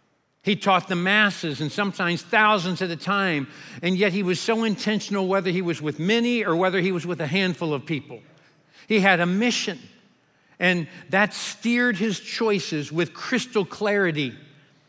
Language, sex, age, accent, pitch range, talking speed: English, male, 60-79, American, 145-185 Hz, 170 wpm